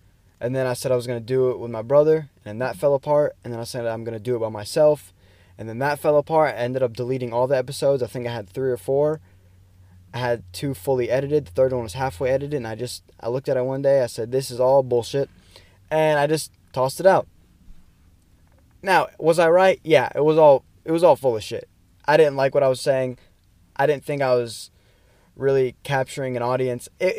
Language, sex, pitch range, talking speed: English, male, 100-135 Hz, 245 wpm